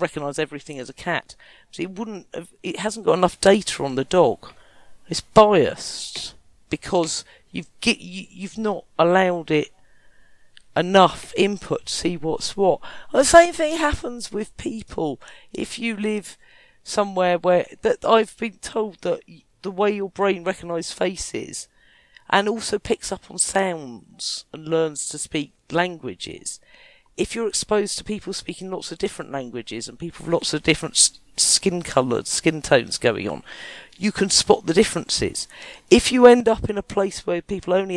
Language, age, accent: English, 50-69, British